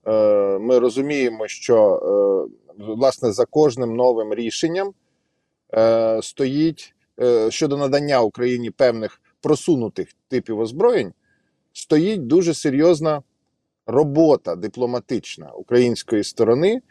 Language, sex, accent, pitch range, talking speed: Ukrainian, male, native, 125-165 Hz, 80 wpm